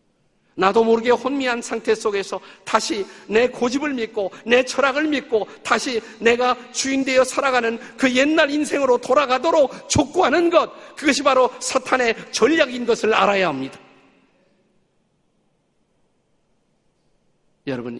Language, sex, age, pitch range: Korean, male, 50-69, 155-255 Hz